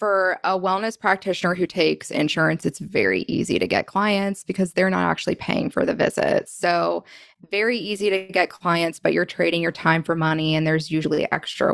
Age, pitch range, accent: 20-39, 160-195 Hz, American